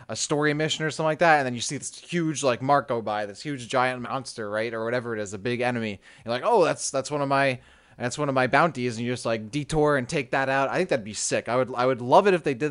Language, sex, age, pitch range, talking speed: English, male, 20-39, 110-140 Hz, 305 wpm